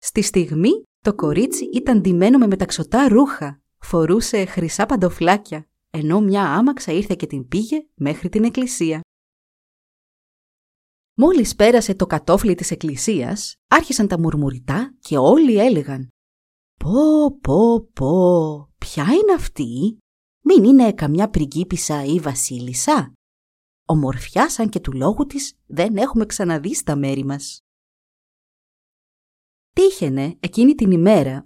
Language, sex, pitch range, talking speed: Greek, female, 145-235 Hz, 120 wpm